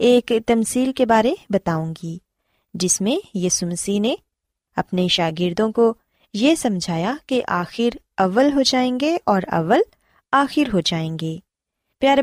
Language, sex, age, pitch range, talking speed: Urdu, female, 20-39, 180-260 Hz, 135 wpm